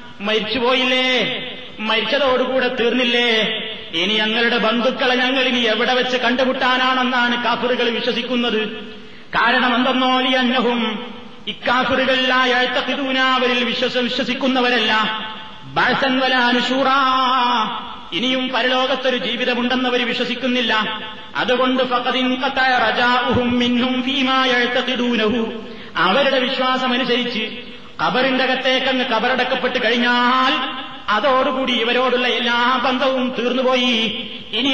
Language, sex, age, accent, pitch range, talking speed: Malayalam, male, 30-49, native, 240-260 Hz, 65 wpm